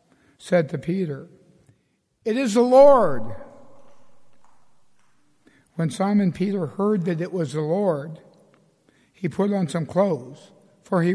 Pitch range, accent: 150-195 Hz, American